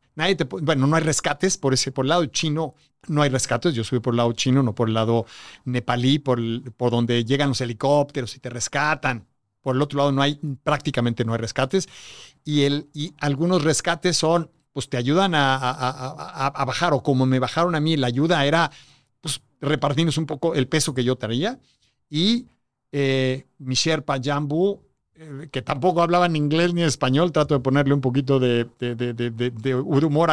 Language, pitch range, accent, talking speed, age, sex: Spanish, 130-155 Hz, Mexican, 200 wpm, 50-69, male